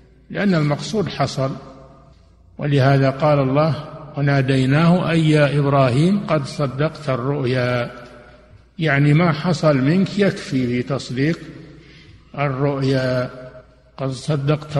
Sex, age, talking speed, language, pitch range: male, 60-79, 90 wpm, Arabic, 135-160 Hz